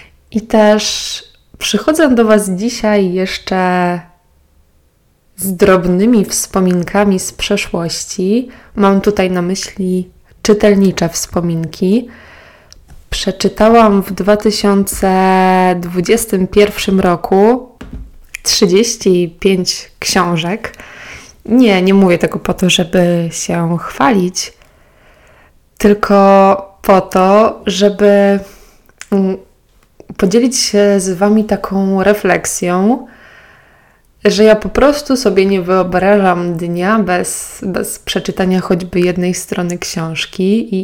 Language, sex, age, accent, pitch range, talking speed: Polish, female, 20-39, native, 180-205 Hz, 85 wpm